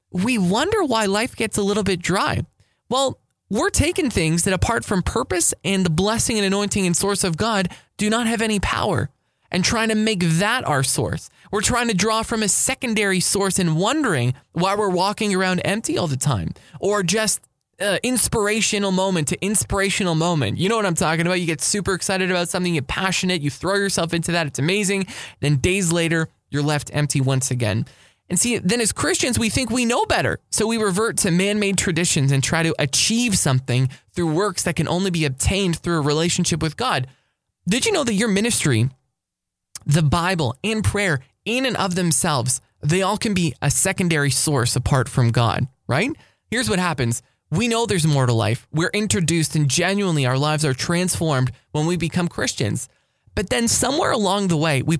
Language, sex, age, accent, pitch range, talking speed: English, male, 20-39, American, 145-205 Hz, 195 wpm